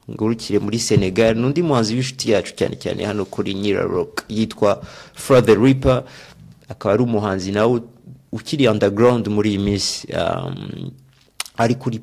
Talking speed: 125 wpm